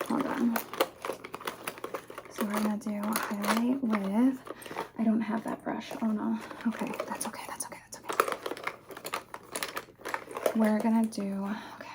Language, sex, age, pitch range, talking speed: English, female, 20-39, 195-255 Hz, 140 wpm